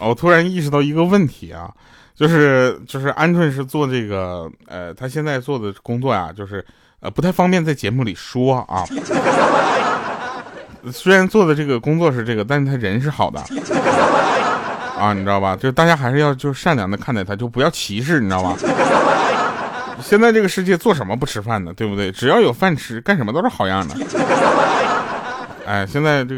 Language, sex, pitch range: Chinese, male, 105-150 Hz